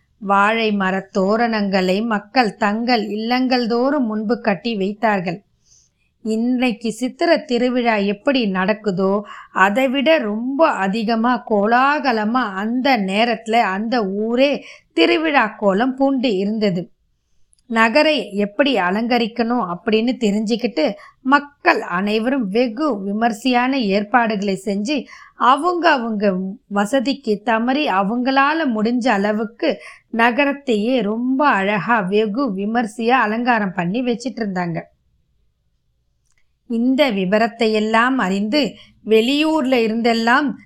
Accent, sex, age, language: native, female, 20-39, Tamil